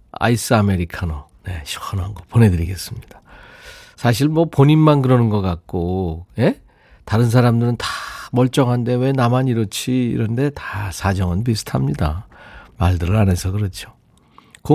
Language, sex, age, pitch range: Korean, male, 40-59, 100-145 Hz